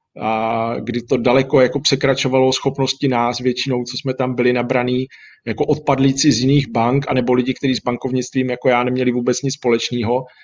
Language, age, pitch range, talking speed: Czech, 40-59, 125-145 Hz, 180 wpm